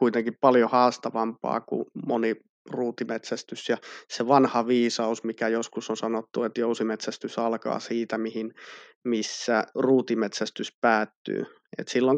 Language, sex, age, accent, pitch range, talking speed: Finnish, male, 30-49, native, 115-125 Hz, 110 wpm